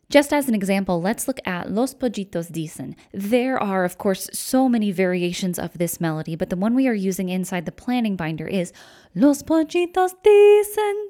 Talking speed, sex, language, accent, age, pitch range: 185 wpm, female, English, American, 10-29, 185-270 Hz